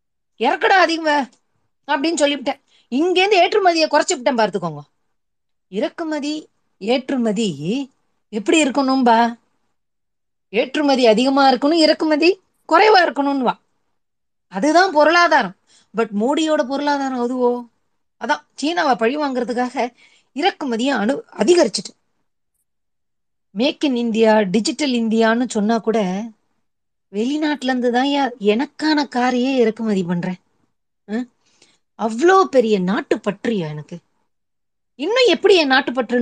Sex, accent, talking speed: female, native, 70 wpm